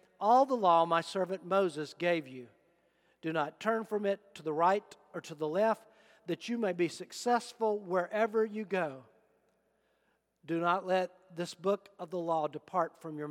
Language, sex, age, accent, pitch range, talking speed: English, male, 50-69, American, 145-195 Hz, 175 wpm